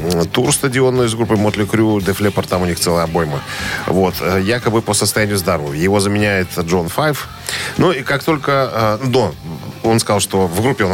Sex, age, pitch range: male, 10-29, 95-120 Hz